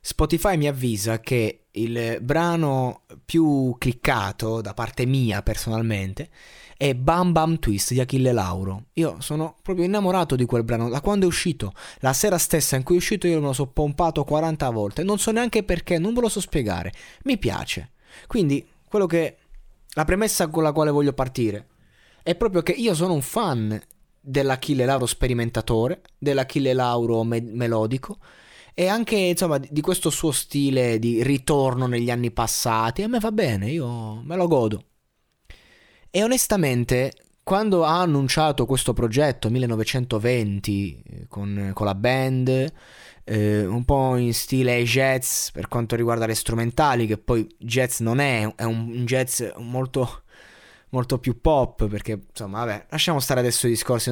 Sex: male